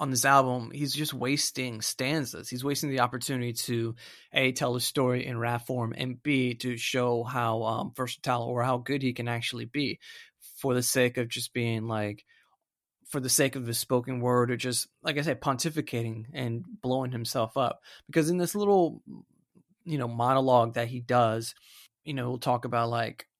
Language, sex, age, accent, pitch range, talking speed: English, male, 30-49, American, 120-135 Hz, 185 wpm